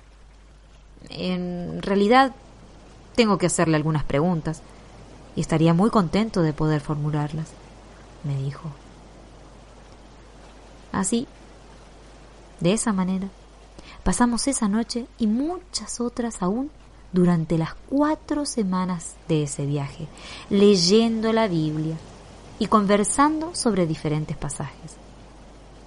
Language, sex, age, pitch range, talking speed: Spanish, female, 20-39, 150-215 Hz, 95 wpm